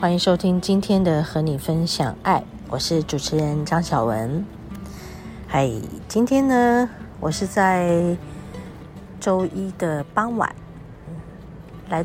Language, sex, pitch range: Chinese, female, 145-185 Hz